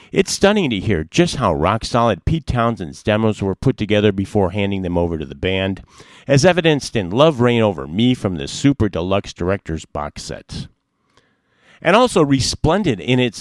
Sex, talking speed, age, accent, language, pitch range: male, 170 wpm, 50-69, American, English, 95-135 Hz